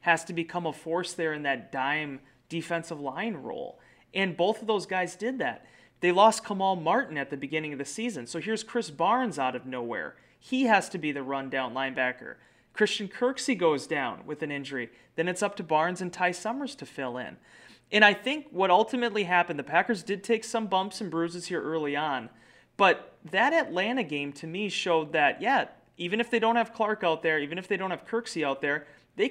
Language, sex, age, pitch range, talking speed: English, male, 30-49, 145-205 Hz, 215 wpm